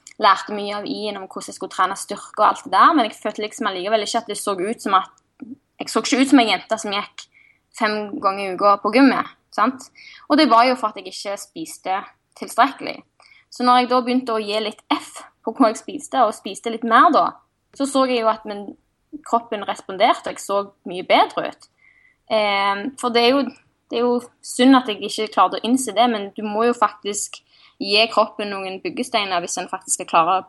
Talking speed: 220 wpm